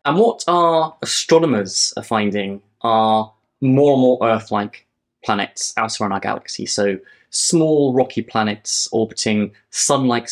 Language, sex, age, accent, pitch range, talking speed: English, male, 20-39, British, 110-130 Hz, 130 wpm